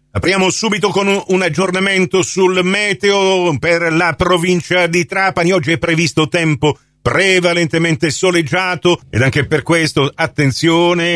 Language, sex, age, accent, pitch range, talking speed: Italian, male, 50-69, native, 125-170 Hz, 125 wpm